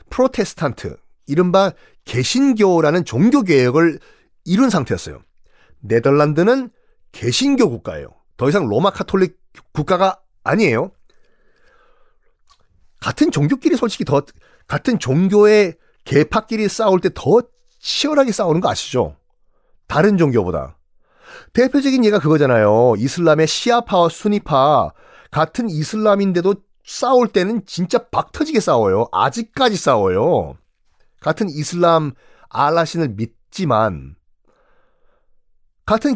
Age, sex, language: 40-59, male, Korean